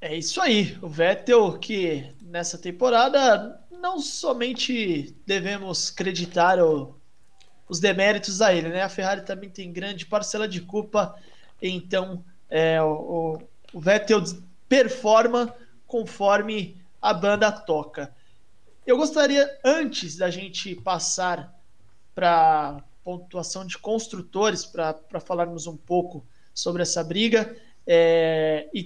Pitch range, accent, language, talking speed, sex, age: 170-225 Hz, Brazilian, Portuguese, 115 wpm, male, 20-39